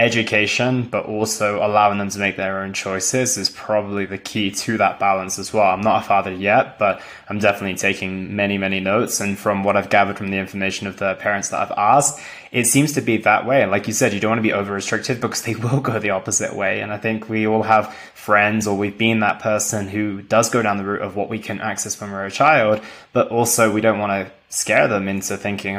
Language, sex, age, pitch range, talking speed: English, male, 20-39, 100-115 Hz, 245 wpm